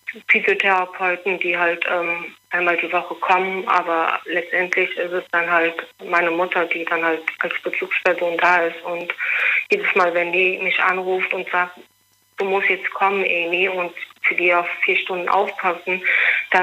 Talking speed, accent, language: 160 wpm, German, German